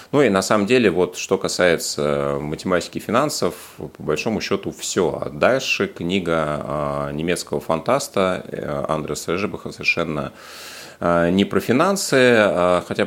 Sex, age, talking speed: male, 30-49, 120 wpm